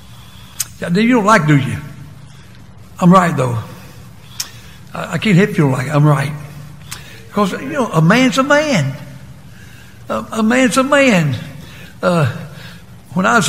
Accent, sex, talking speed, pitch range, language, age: American, male, 140 wpm, 155-215 Hz, English, 60-79